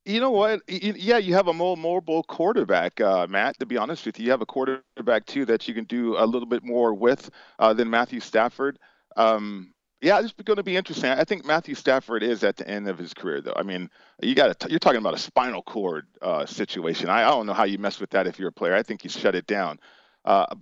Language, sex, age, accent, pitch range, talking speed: English, male, 40-59, American, 110-145 Hz, 260 wpm